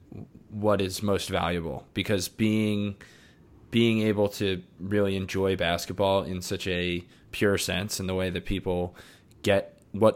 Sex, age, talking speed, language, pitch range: male, 20-39, 140 wpm, English, 90-110 Hz